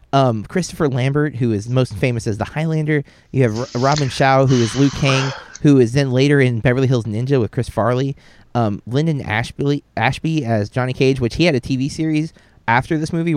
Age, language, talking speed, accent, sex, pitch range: 30-49, English, 200 wpm, American, male, 120-155 Hz